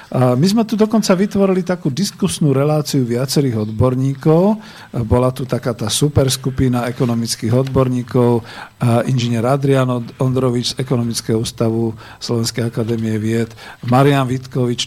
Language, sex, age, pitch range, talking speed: Slovak, male, 50-69, 115-135 Hz, 115 wpm